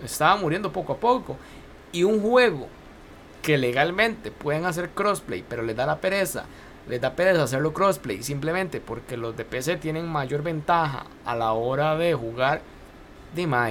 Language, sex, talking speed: Spanish, male, 160 wpm